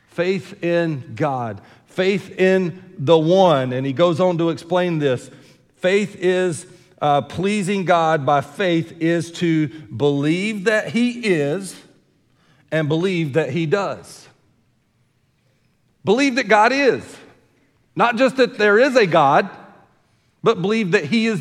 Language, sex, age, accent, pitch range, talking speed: English, male, 40-59, American, 145-190 Hz, 135 wpm